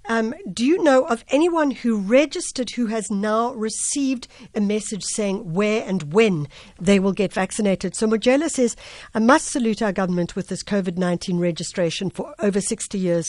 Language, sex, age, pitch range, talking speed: English, female, 60-79, 175-230 Hz, 170 wpm